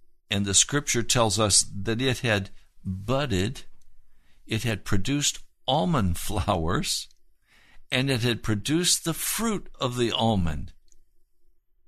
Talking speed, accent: 115 wpm, American